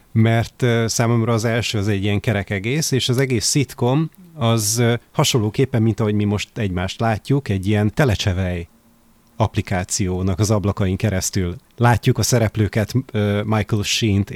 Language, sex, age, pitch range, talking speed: Hungarian, male, 30-49, 100-120 Hz, 140 wpm